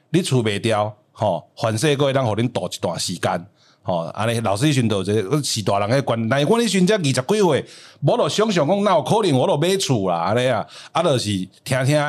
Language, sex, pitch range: Chinese, male, 105-145 Hz